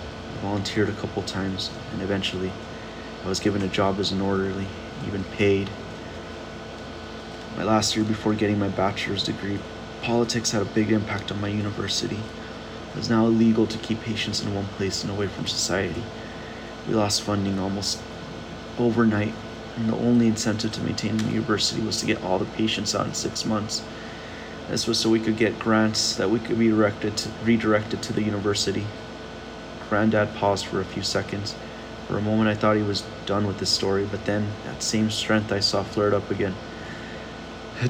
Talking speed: 180 wpm